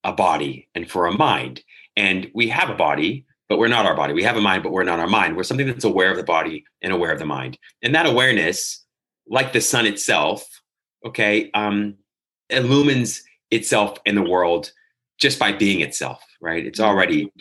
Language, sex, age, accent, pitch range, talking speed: English, male, 30-49, American, 105-145 Hz, 200 wpm